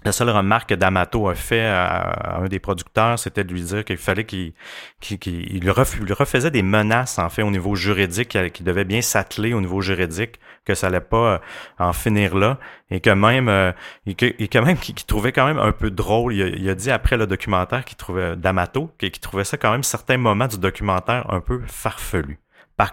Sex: male